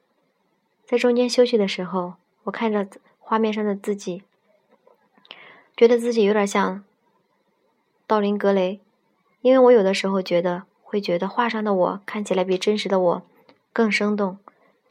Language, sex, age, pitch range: Chinese, male, 20-39, 190-220 Hz